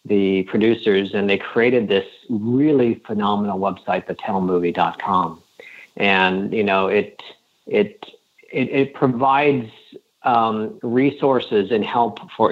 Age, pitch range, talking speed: 50-69, 100-125 Hz, 110 wpm